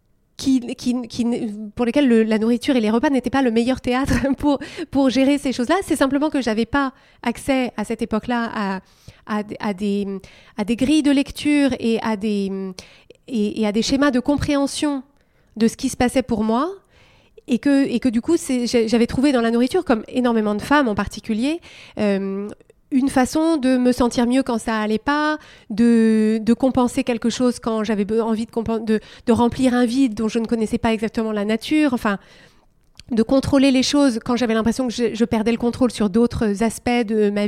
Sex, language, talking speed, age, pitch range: female, French, 205 wpm, 30-49, 225-270 Hz